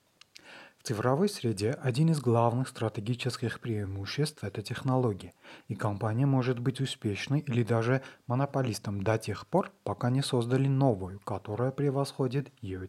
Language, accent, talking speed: Russian, native, 135 wpm